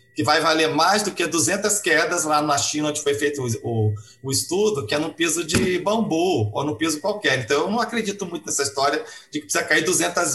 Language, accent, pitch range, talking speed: English, Brazilian, 135-170 Hz, 225 wpm